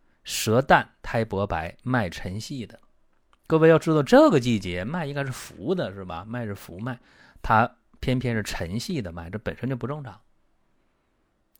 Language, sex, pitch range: Chinese, male, 80-130 Hz